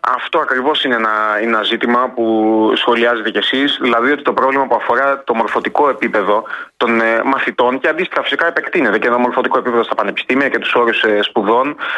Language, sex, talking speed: Greek, male, 175 wpm